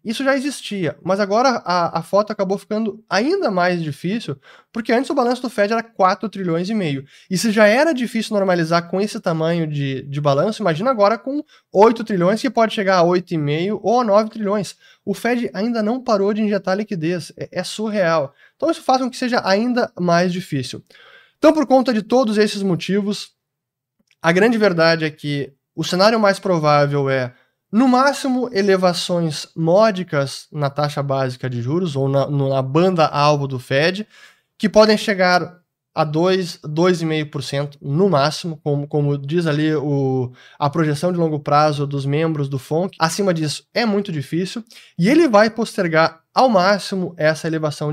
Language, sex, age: Portuguese, male, 20-39